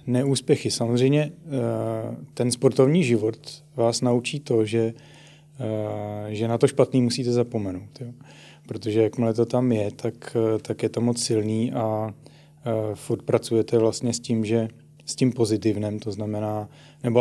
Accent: native